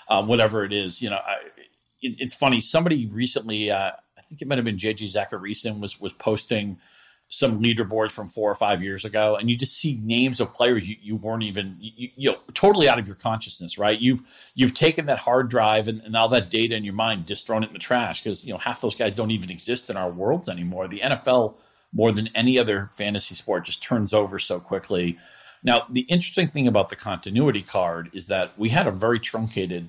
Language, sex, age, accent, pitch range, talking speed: English, male, 40-59, American, 95-120 Hz, 225 wpm